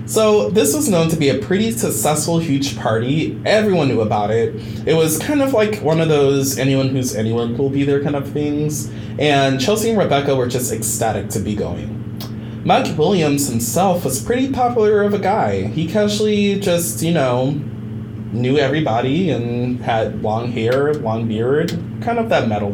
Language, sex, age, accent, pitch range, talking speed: English, male, 20-39, American, 110-150 Hz, 180 wpm